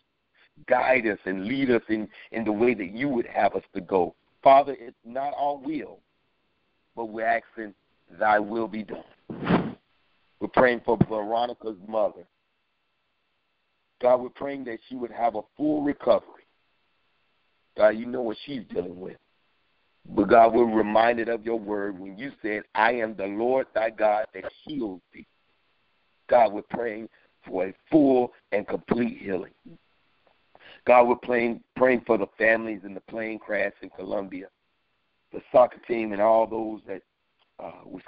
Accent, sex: American, male